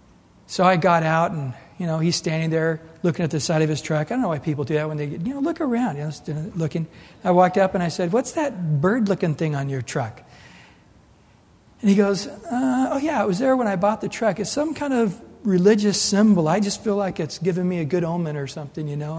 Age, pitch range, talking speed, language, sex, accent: 60-79, 160-210 Hz, 255 wpm, English, male, American